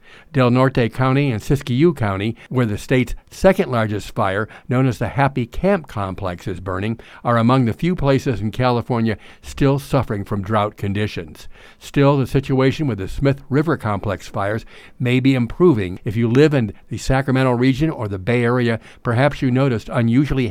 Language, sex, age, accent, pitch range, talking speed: English, male, 50-69, American, 105-135 Hz, 175 wpm